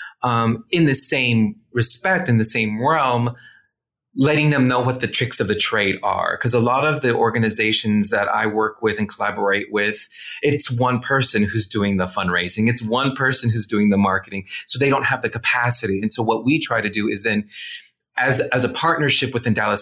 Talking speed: 205 wpm